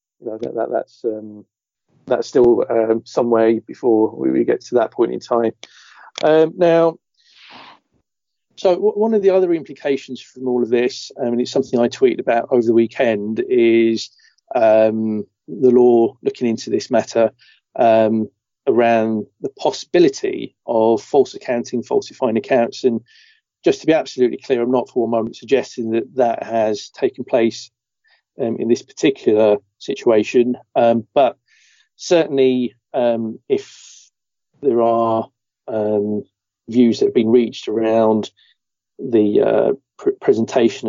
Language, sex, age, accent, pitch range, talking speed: English, male, 40-59, British, 110-160 Hz, 140 wpm